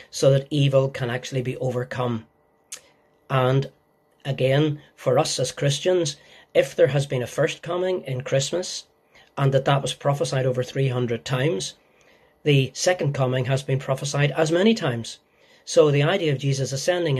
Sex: male